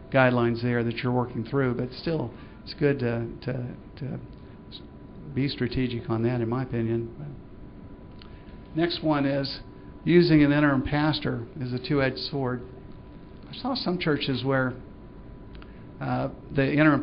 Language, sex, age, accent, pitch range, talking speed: English, male, 50-69, American, 115-135 Hz, 140 wpm